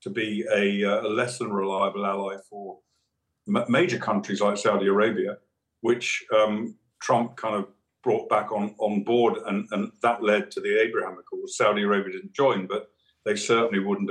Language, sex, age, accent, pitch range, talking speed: English, male, 50-69, British, 100-120 Hz, 180 wpm